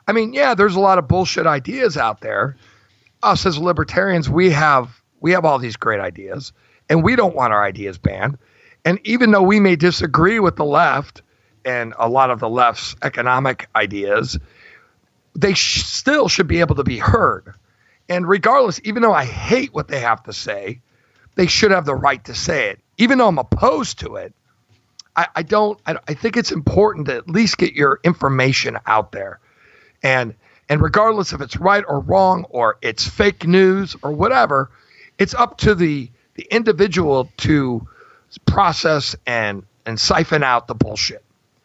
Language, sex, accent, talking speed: English, male, American, 180 wpm